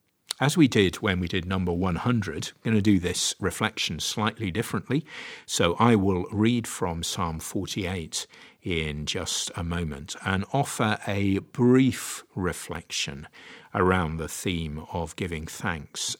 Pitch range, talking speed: 85-110 Hz, 140 wpm